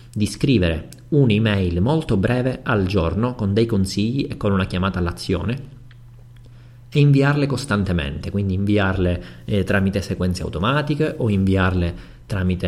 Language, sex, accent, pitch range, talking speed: Italian, male, native, 90-115 Hz, 130 wpm